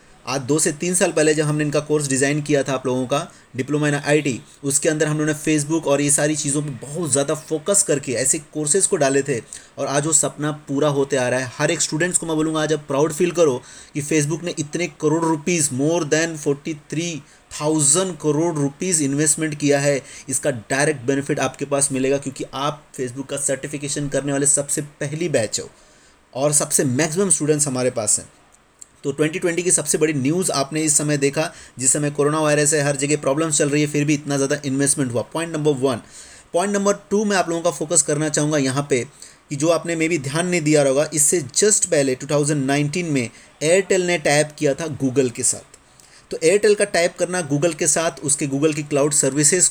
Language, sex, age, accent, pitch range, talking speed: Hindi, male, 30-49, native, 140-165 Hz, 210 wpm